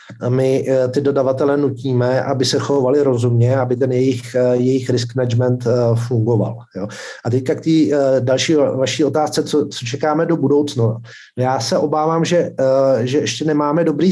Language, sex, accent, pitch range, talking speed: Czech, male, native, 125-140 Hz, 155 wpm